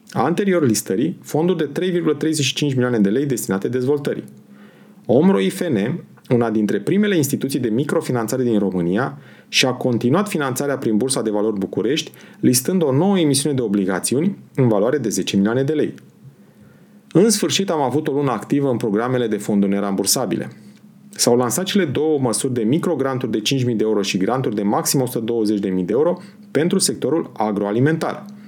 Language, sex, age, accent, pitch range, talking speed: Romanian, male, 30-49, native, 110-180 Hz, 155 wpm